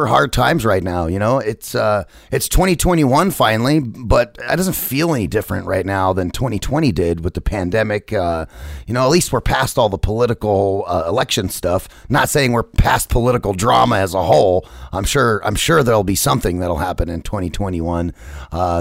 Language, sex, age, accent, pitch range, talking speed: English, male, 30-49, American, 95-130 Hz, 190 wpm